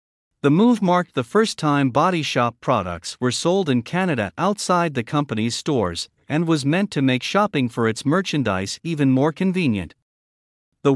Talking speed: 165 wpm